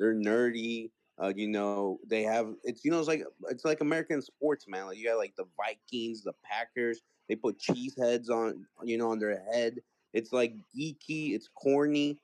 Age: 30-49